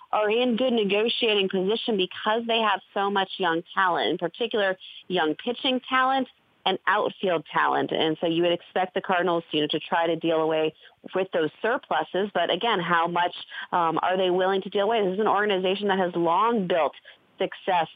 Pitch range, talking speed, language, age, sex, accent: 170-210 Hz, 190 wpm, English, 30-49, female, American